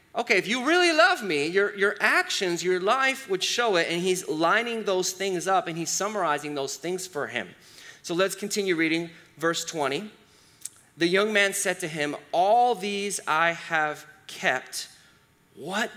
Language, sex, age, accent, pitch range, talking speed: English, male, 30-49, American, 155-210 Hz, 170 wpm